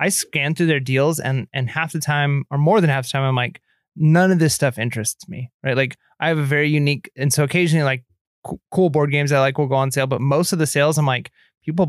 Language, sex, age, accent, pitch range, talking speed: English, male, 20-39, American, 135-160 Hz, 260 wpm